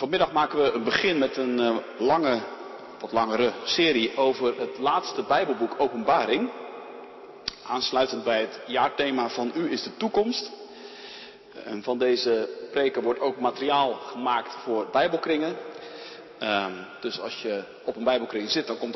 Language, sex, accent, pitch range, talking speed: Dutch, male, Dutch, 120-165 Hz, 140 wpm